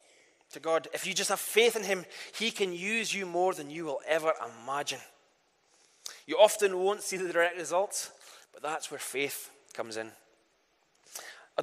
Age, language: 20-39, English